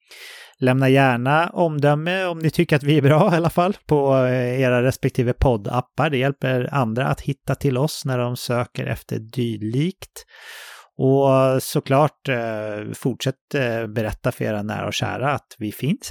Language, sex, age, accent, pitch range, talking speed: English, male, 30-49, Swedish, 115-145 Hz, 155 wpm